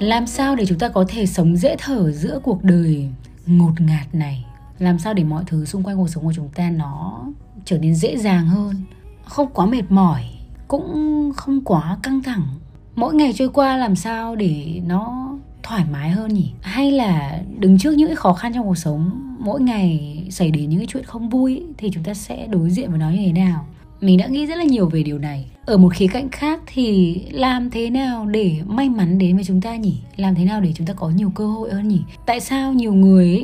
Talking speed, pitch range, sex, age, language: 225 wpm, 170-235 Hz, female, 20-39, Vietnamese